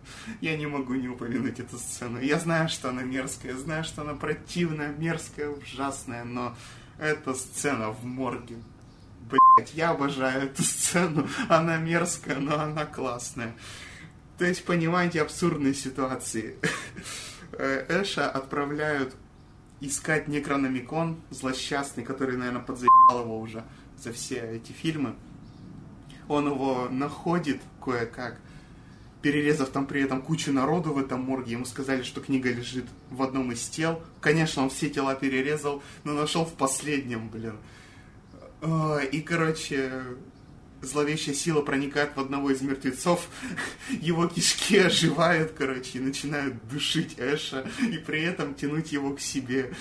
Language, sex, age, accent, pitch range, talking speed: Russian, male, 20-39, native, 130-155 Hz, 130 wpm